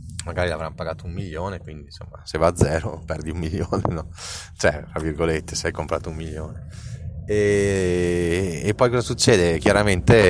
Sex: male